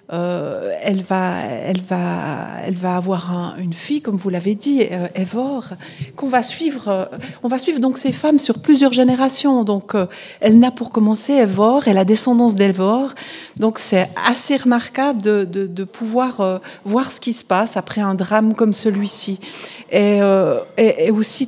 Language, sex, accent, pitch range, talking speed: French, female, French, 195-240 Hz, 180 wpm